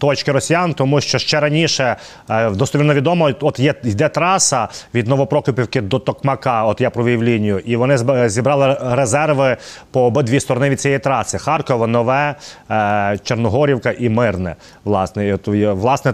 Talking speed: 155 wpm